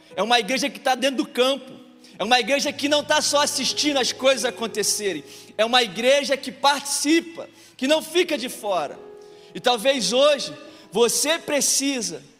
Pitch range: 210-255 Hz